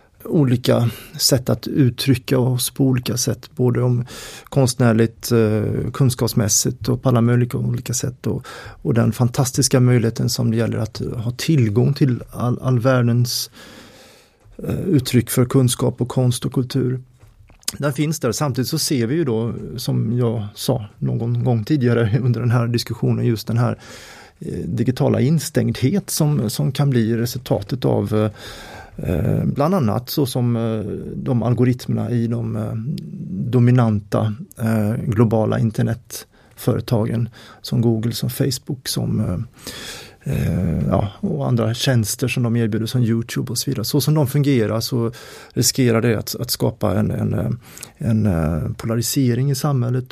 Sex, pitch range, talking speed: male, 115-135 Hz, 140 wpm